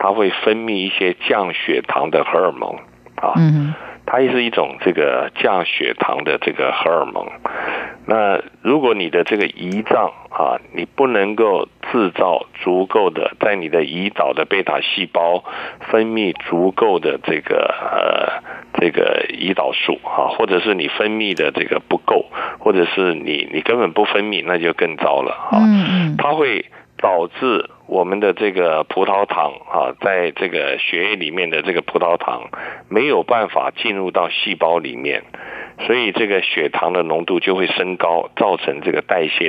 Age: 60-79